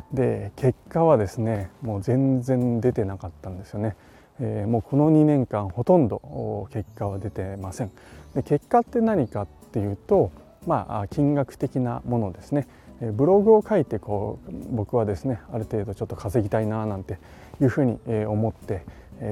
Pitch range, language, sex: 105-140 Hz, Japanese, male